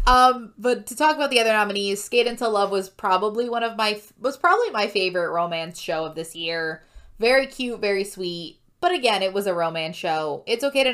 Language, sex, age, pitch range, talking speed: English, female, 20-39, 180-240 Hz, 215 wpm